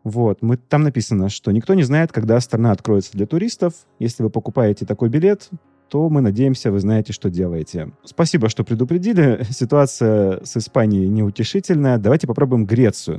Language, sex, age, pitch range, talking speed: Russian, male, 30-49, 105-135 Hz, 155 wpm